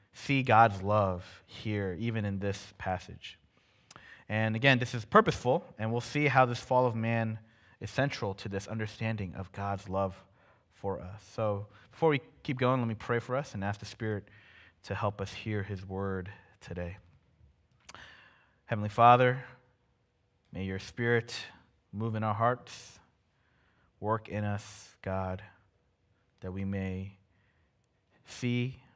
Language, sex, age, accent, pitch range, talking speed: English, male, 20-39, American, 95-115 Hz, 145 wpm